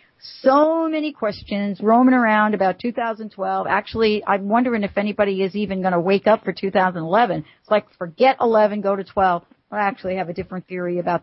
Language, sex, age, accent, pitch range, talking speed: English, female, 50-69, American, 190-230 Hz, 180 wpm